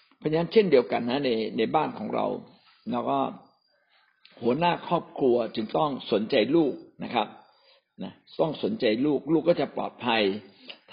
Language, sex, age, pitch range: Thai, male, 60-79, 115-165 Hz